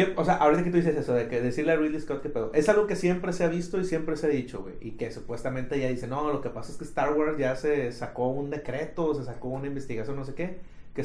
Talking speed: 295 wpm